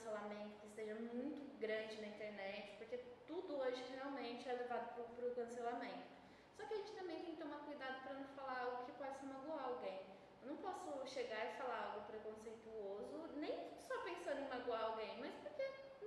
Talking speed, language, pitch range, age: 180 wpm, Portuguese, 225-285 Hz, 10-29